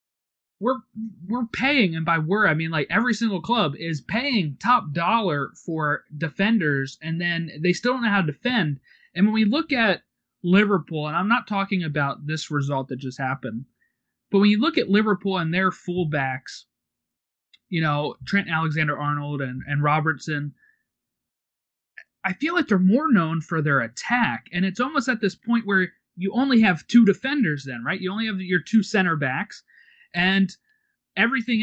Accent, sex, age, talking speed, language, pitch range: American, male, 30-49, 170 wpm, English, 150-205 Hz